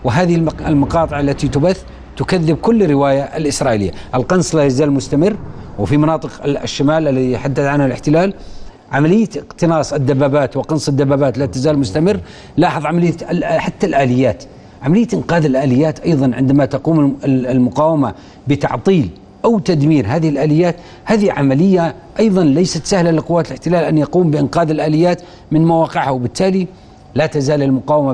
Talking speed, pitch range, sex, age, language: 130 wpm, 135-165 Hz, male, 40-59, Arabic